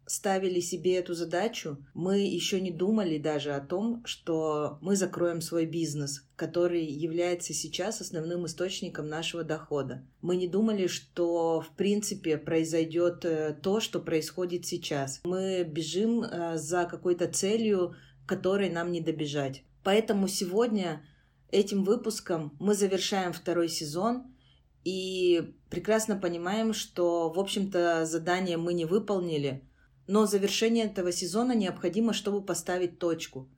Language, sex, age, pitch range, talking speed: Russian, female, 30-49, 165-195 Hz, 125 wpm